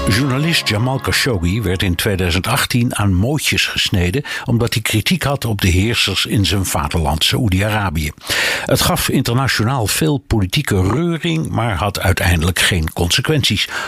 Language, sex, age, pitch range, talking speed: Dutch, male, 60-79, 95-125 Hz, 135 wpm